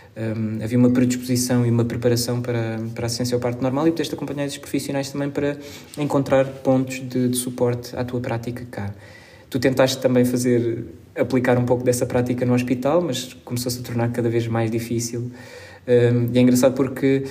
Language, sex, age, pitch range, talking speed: Portuguese, male, 20-39, 115-130 Hz, 185 wpm